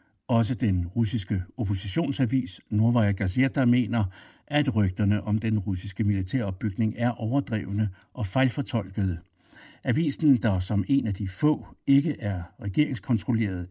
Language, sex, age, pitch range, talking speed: Danish, male, 60-79, 100-135 Hz, 120 wpm